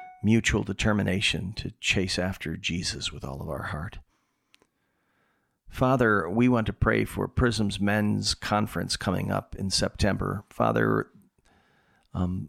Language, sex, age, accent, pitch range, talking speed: English, male, 40-59, American, 90-105 Hz, 125 wpm